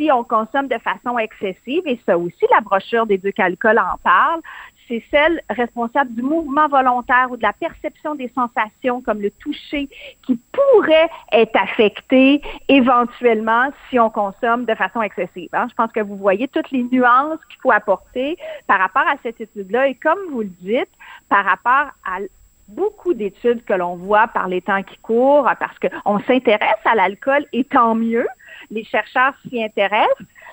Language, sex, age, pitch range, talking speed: French, female, 50-69, 205-280 Hz, 175 wpm